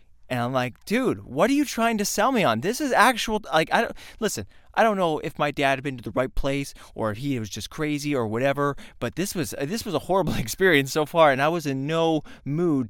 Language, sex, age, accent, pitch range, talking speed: English, male, 20-39, American, 115-155 Hz, 255 wpm